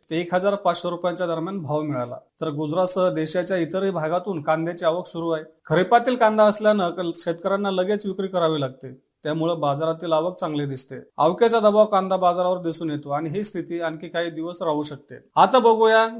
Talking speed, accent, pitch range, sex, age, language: 170 wpm, native, 160-195 Hz, male, 40-59, Marathi